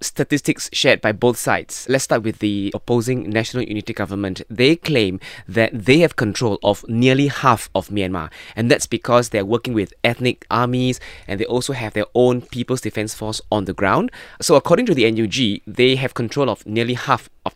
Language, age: English, 20-39